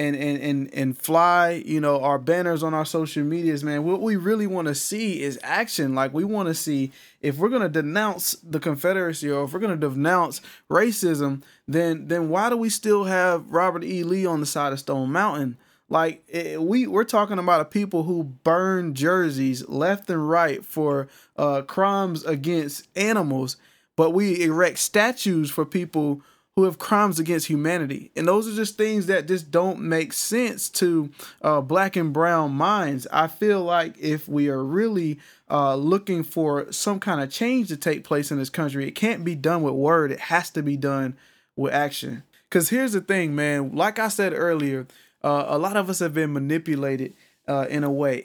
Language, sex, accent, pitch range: English, male, American, 145-195 Hz